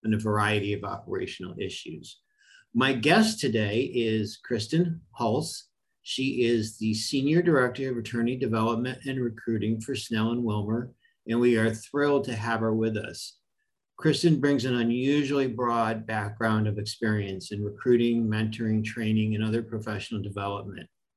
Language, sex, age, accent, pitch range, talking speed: English, male, 50-69, American, 105-125 Hz, 140 wpm